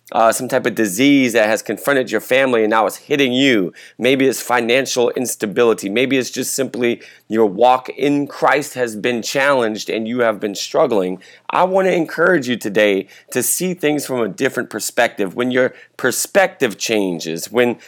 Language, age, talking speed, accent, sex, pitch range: English, 30-49, 180 wpm, American, male, 110-140 Hz